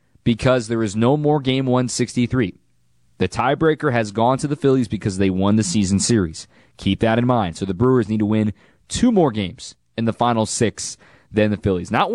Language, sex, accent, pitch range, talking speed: English, male, American, 100-135 Hz, 200 wpm